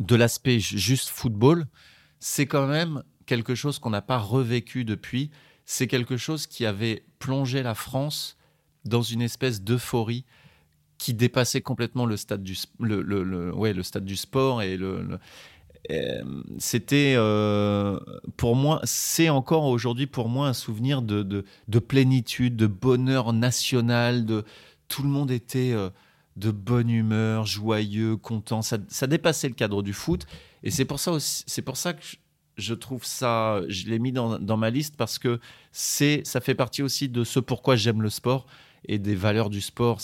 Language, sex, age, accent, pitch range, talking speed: French, male, 30-49, French, 100-130 Hz, 175 wpm